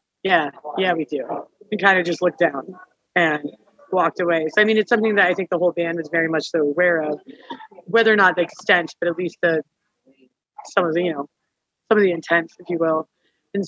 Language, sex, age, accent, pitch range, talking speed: English, female, 30-49, American, 165-195 Hz, 230 wpm